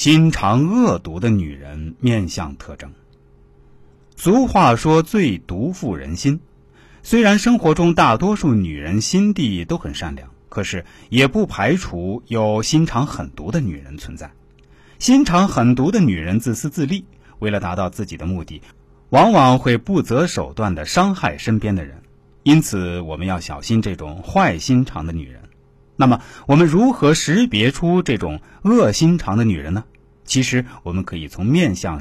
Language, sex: Chinese, male